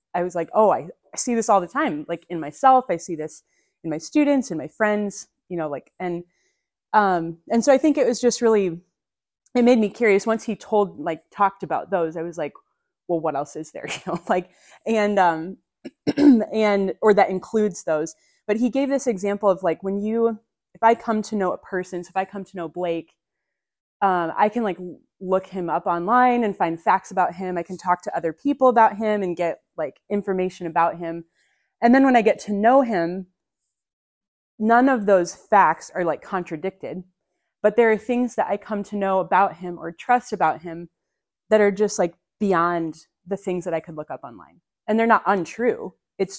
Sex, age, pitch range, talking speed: female, 30-49, 170-215 Hz, 210 wpm